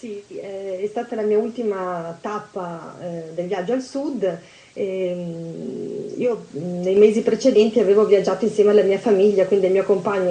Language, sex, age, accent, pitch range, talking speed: Italian, female, 30-49, native, 190-225 Hz, 155 wpm